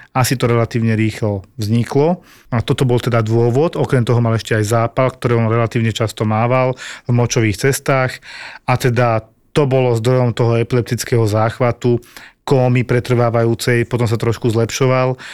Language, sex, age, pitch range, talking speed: Slovak, male, 40-59, 115-135 Hz, 150 wpm